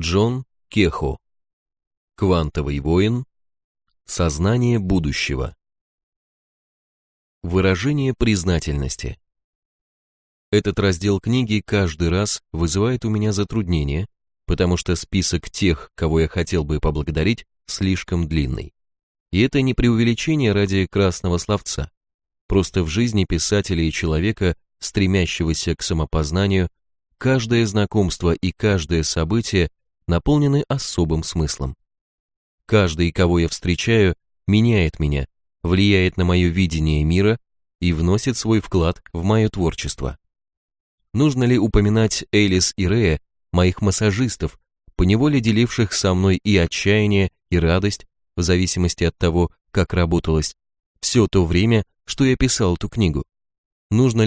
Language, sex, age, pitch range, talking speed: Russian, male, 30-49, 80-105 Hz, 110 wpm